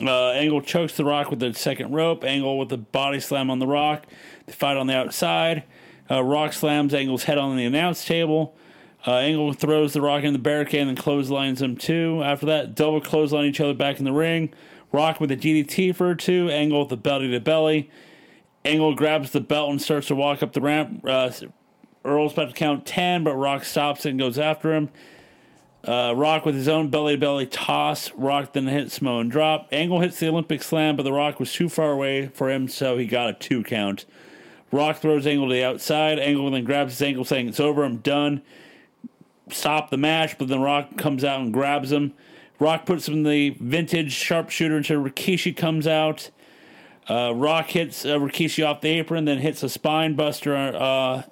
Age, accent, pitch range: 40-59, American, 135-155 Hz